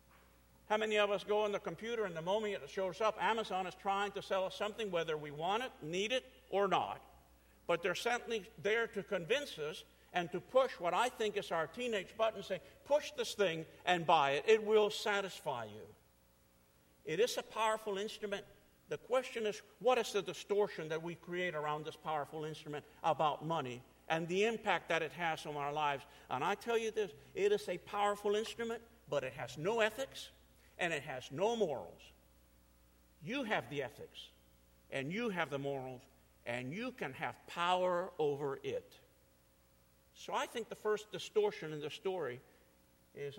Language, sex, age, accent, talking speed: English, male, 50-69, American, 185 wpm